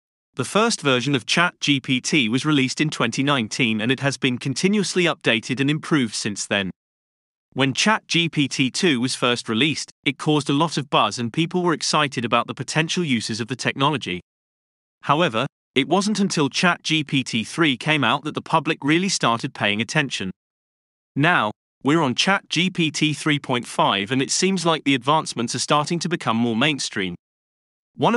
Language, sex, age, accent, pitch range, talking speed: English, male, 30-49, British, 120-165 Hz, 155 wpm